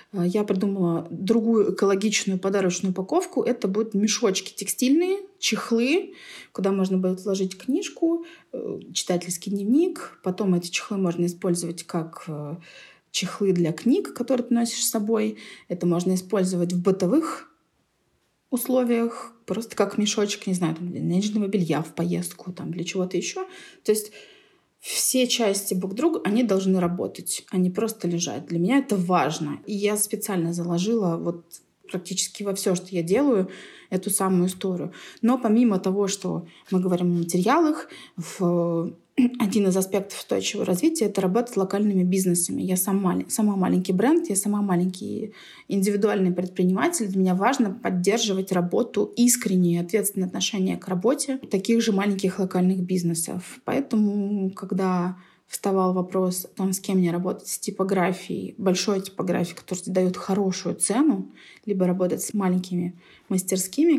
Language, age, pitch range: Russian, 30-49, 180-220 Hz